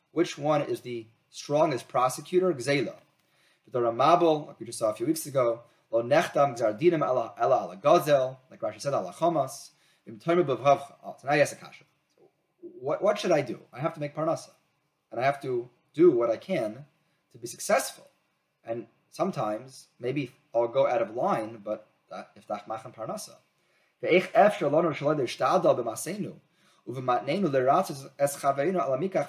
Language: English